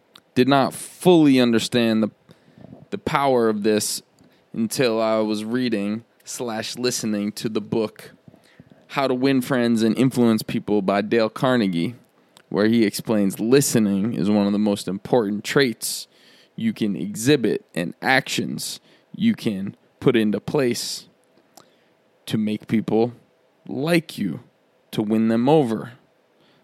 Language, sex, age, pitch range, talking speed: English, male, 20-39, 110-130 Hz, 130 wpm